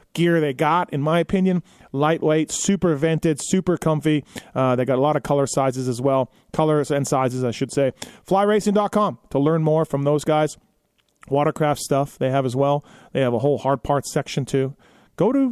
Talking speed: 195 wpm